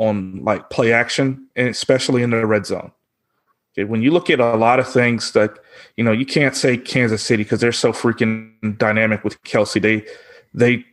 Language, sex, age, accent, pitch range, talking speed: English, male, 30-49, American, 110-135 Hz, 200 wpm